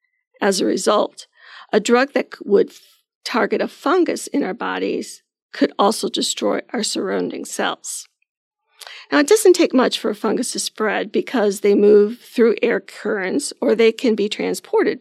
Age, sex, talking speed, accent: 40-59, female, 160 wpm, American